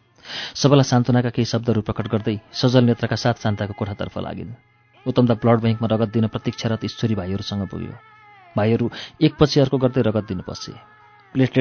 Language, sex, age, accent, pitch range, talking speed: English, male, 30-49, Indian, 110-130 Hz, 150 wpm